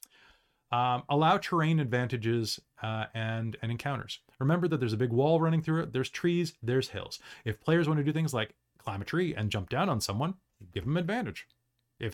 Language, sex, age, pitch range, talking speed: English, male, 30-49, 115-160 Hz, 200 wpm